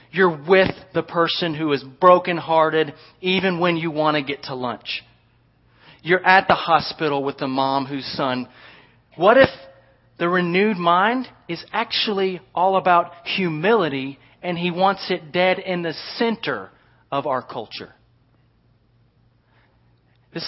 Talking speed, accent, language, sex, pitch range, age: 140 wpm, American, English, male, 125-165 Hz, 30-49